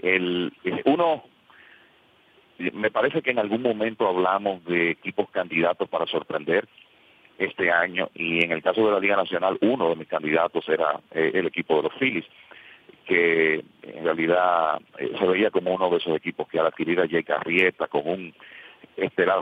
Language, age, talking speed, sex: English, 40-59, 170 wpm, male